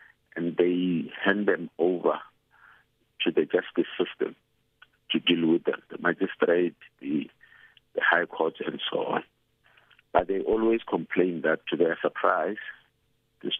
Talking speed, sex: 135 wpm, male